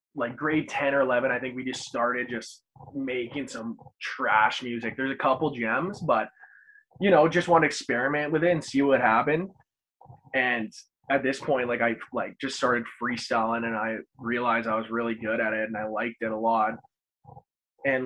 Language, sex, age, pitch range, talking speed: English, male, 20-39, 120-145 Hz, 195 wpm